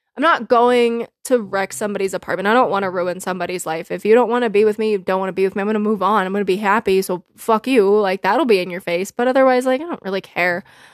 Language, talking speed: English, 300 wpm